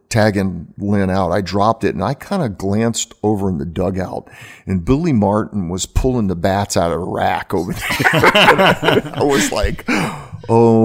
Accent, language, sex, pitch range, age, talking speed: American, English, male, 95-110 Hz, 50-69, 185 wpm